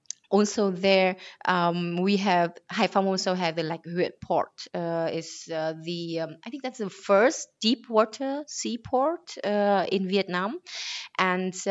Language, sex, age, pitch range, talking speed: German, female, 20-39, 170-200 Hz, 155 wpm